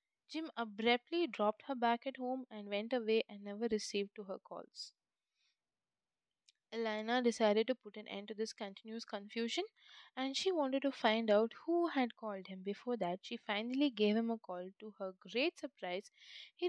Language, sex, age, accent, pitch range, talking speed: English, female, 20-39, Indian, 210-265 Hz, 175 wpm